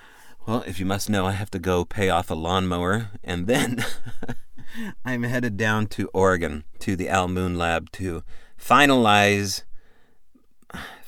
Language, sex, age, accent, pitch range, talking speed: English, male, 40-59, American, 85-105 Hz, 145 wpm